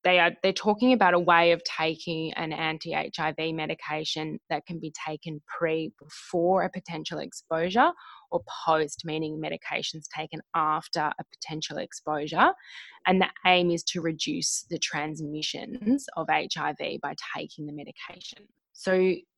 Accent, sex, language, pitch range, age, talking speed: Australian, female, English, 160-190 Hz, 20-39, 140 wpm